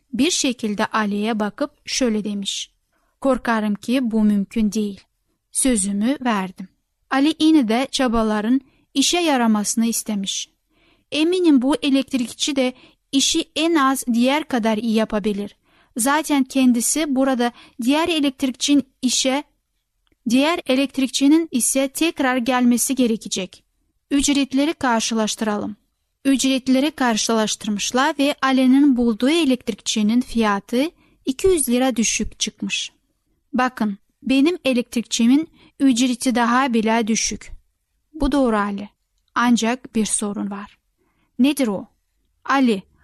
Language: Turkish